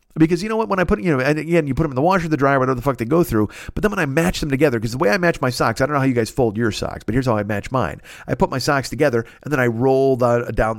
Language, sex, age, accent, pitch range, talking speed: English, male, 50-69, American, 115-155 Hz, 355 wpm